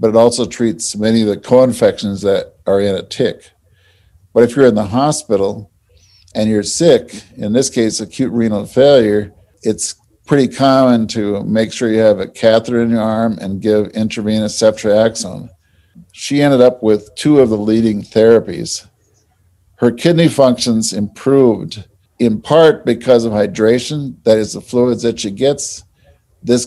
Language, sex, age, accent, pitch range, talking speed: English, male, 50-69, American, 105-120 Hz, 160 wpm